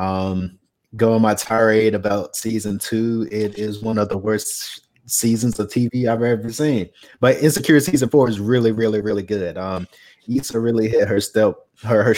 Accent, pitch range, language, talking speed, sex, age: American, 100-120 Hz, English, 175 wpm, male, 20-39